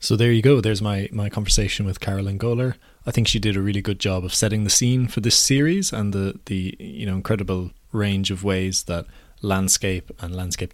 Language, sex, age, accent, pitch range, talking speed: English, male, 20-39, Irish, 95-115 Hz, 220 wpm